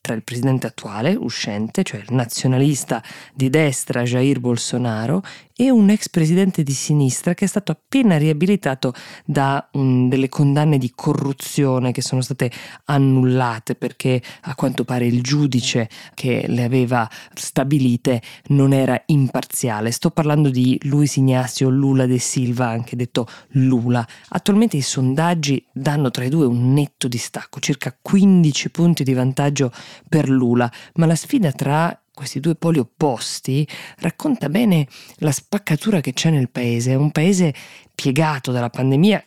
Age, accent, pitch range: 20-39, native, 125-155 Hz